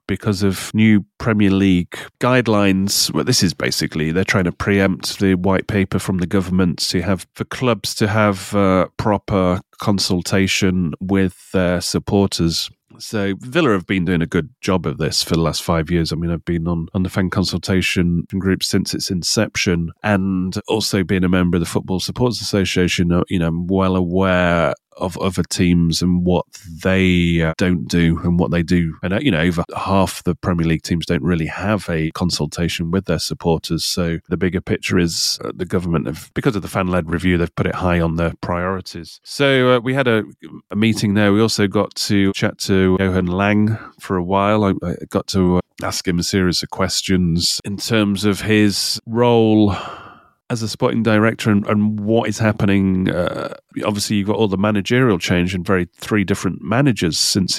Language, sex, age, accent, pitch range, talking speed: English, male, 30-49, British, 90-105 Hz, 195 wpm